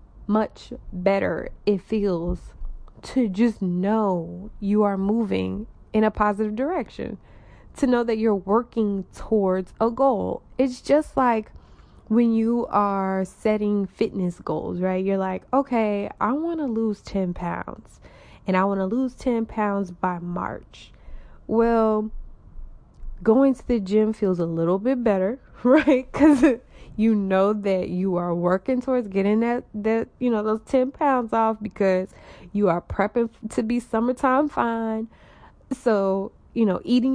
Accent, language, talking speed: American, English, 145 wpm